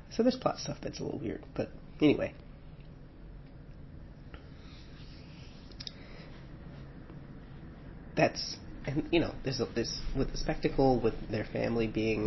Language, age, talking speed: English, 30-49, 115 wpm